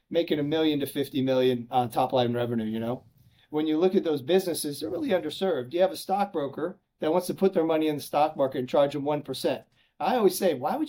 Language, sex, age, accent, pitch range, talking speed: English, male, 30-49, American, 140-180 Hz, 240 wpm